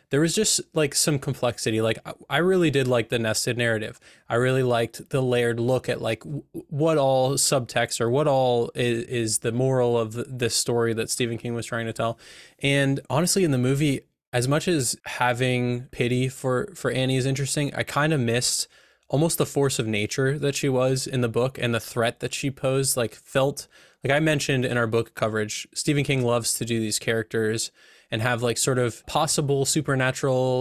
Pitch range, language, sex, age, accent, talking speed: 120-140 Hz, English, male, 20-39, American, 200 wpm